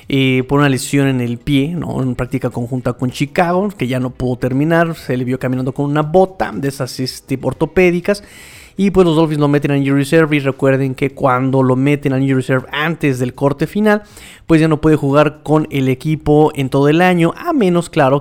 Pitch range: 135-160 Hz